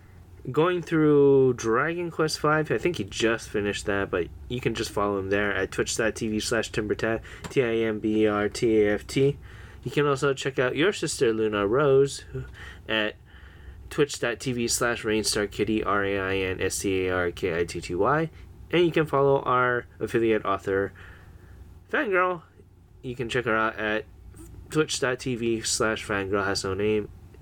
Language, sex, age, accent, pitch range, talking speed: English, male, 10-29, American, 95-135 Hz, 120 wpm